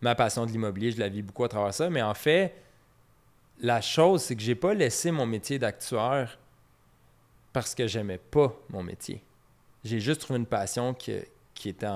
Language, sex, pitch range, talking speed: French, male, 105-125 Hz, 200 wpm